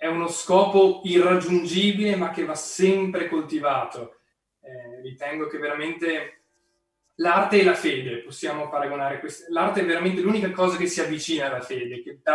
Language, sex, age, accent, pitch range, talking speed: Italian, male, 20-39, native, 150-180 Hz, 155 wpm